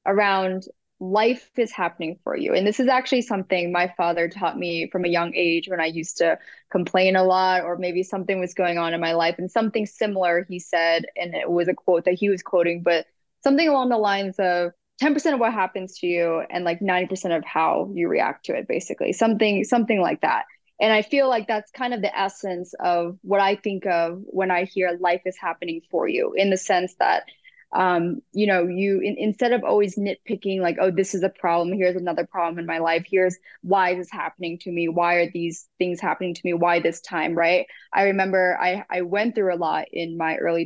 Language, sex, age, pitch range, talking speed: English, female, 20-39, 175-200 Hz, 225 wpm